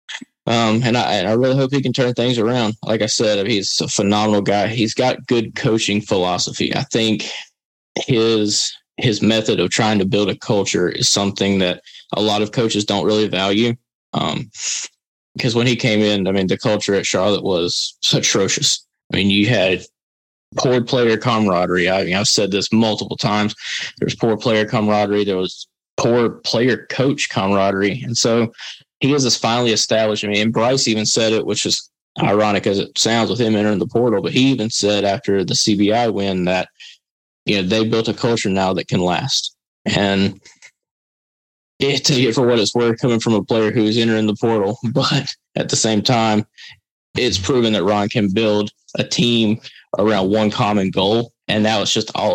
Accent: American